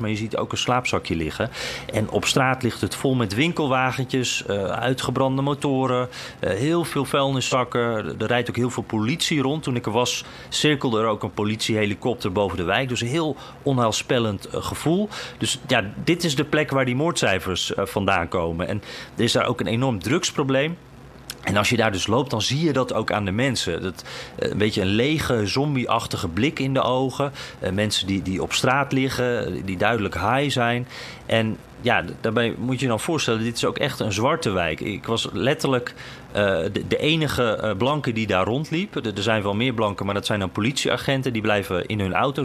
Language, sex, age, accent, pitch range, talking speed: Dutch, male, 40-59, Dutch, 110-135 Hz, 200 wpm